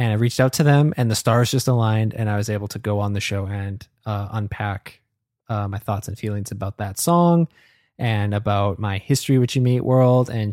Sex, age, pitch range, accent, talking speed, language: male, 20-39, 105-125 Hz, American, 230 wpm, English